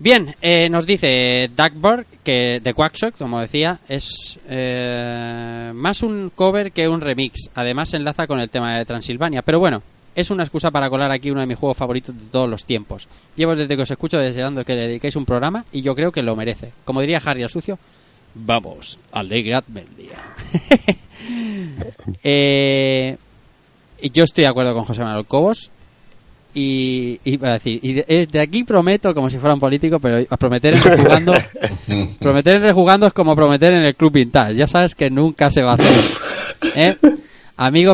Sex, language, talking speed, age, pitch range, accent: male, Spanish, 180 wpm, 20-39, 120-165 Hz, Spanish